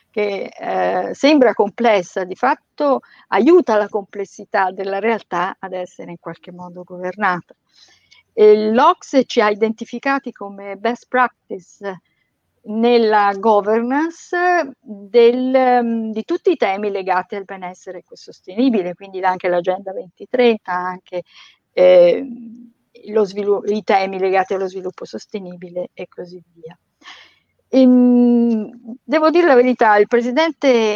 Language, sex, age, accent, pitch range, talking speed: Italian, female, 50-69, native, 190-245 Hz, 120 wpm